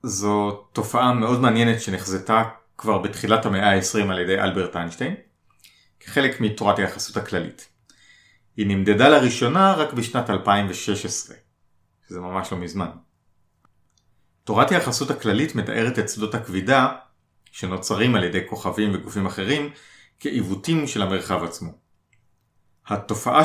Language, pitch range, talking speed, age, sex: Hebrew, 95-115 Hz, 115 wpm, 30-49, male